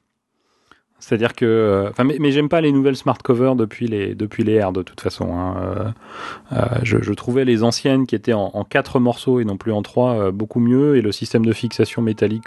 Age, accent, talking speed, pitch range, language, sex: 30-49, French, 220 wpm, 100-120 Hz, French, male